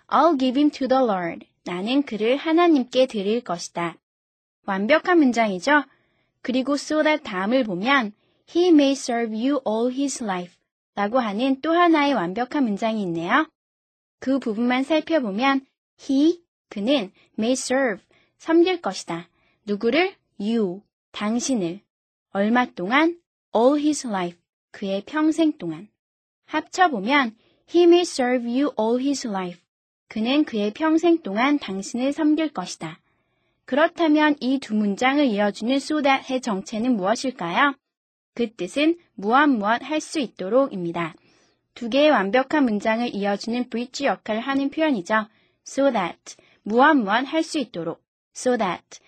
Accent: native